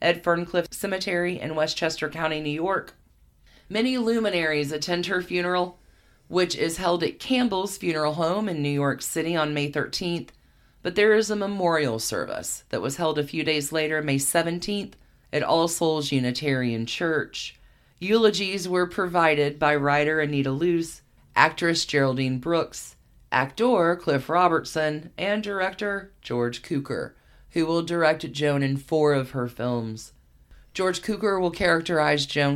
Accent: American